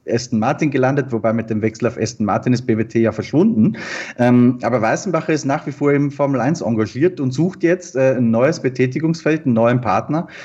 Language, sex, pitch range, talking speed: German, male, 115-140 Hz, 200 wpm